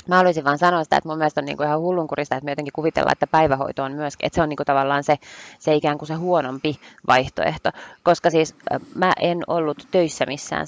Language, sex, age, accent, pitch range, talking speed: Finnish, female, 20-39, native, 145-180 Hz, 235 wpm